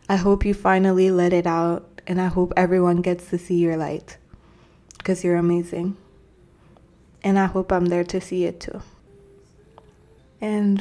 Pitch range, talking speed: 185-205 Hz, 160 wpm